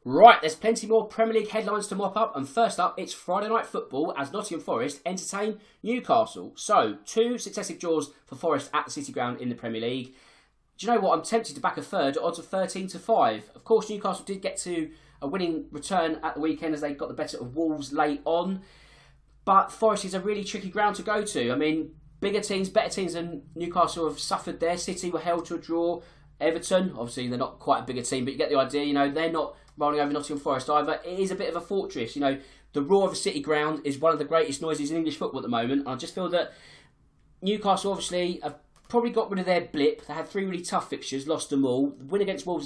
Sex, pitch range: male, 145-190 Hz